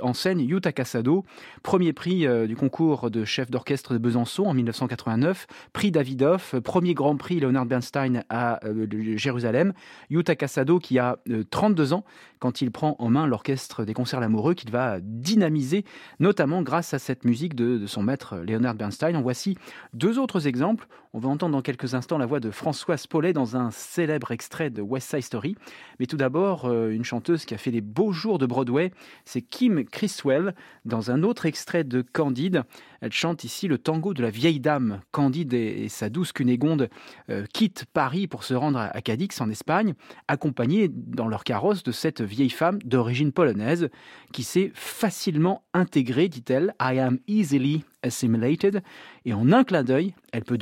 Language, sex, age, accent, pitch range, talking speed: French, male, 30-49, French, 120-170 Hz, 185 wpm